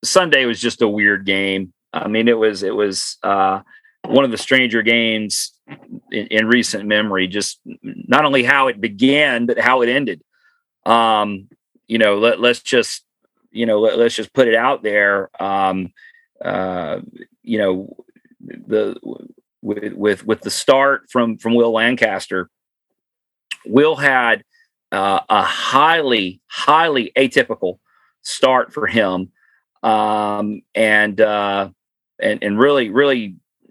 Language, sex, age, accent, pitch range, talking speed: English, male, 40-59, American, 100-120 Hz, 140 wpm